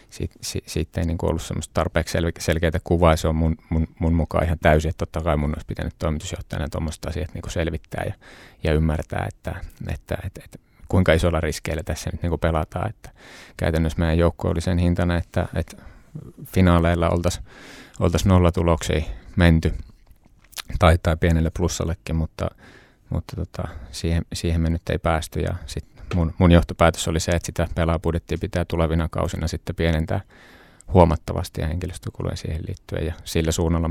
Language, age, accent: Finnish, 30-49, native